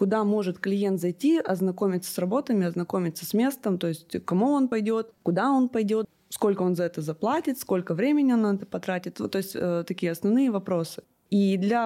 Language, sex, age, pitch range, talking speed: Russian, female, 20-39, 175-215 Hz, 190 wpm